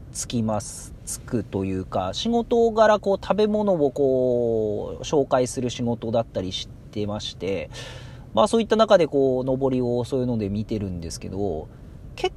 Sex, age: male, 40-59